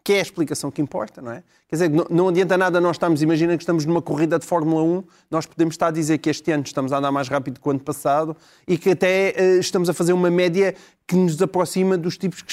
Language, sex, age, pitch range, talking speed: Portuguese, male, 20-39, 180-235 Hz, 260 wpm